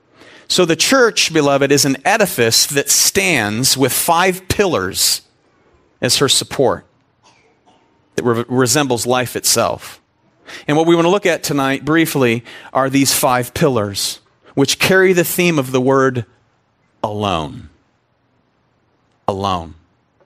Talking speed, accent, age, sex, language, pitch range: 125 wpm, American, 40-59, male, English, 130-185 Hz